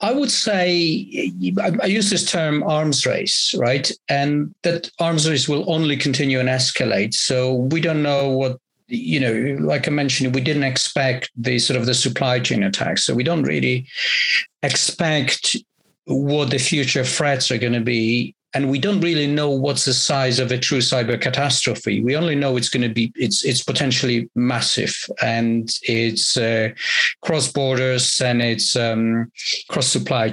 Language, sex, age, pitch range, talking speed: English, male, 50-69, 120-155 Hz, 165 wpm